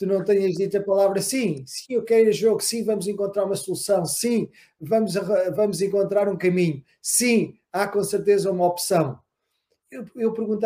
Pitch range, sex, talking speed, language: 170-220 Hz, male, 180 wpm, Portuguese